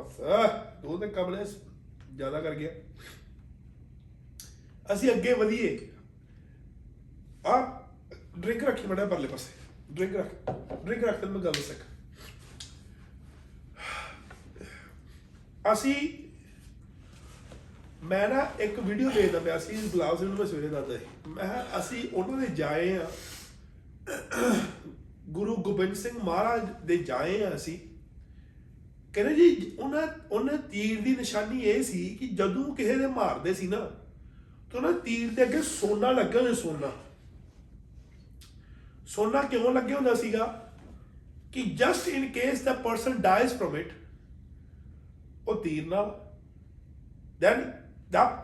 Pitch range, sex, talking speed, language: 155-235 Hz, male, 120 wpm, Punjabi